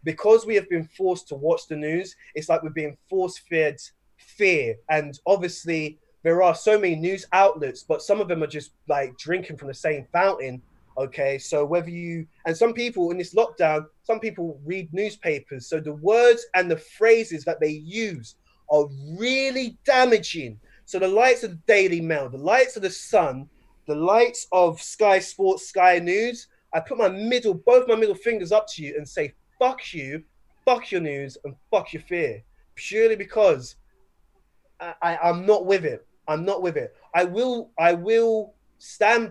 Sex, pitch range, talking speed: male, 150-210 Hz, 180 wpm